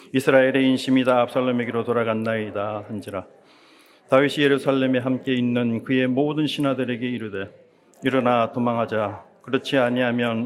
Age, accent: 40-59, native